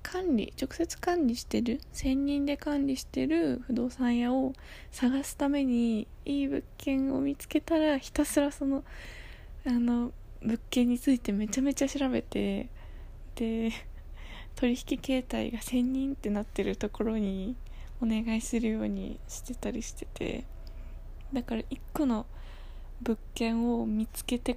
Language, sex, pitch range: Japanese, female, 210-255 Hz